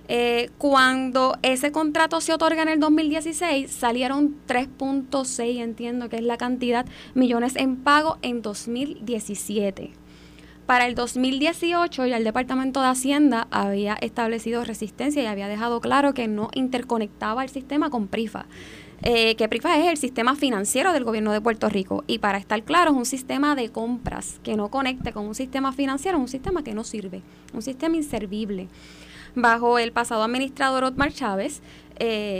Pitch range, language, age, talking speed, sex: 225-275 Hz, Spanish, 20-39, 160 wpm, female